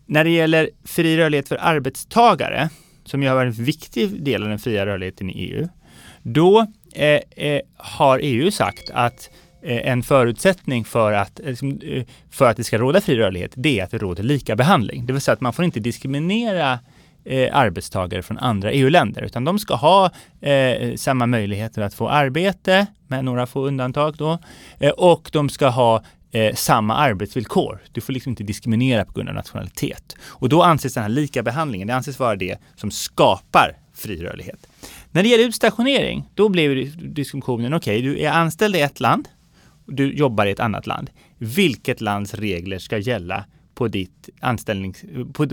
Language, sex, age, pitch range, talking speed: Swedish, male, 30-49, 115-155 Hz, 180 wpm